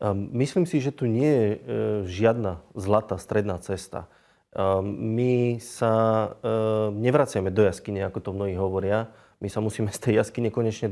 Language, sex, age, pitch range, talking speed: Slovak, male, 20-39, 105-120 Hz, 145 wpm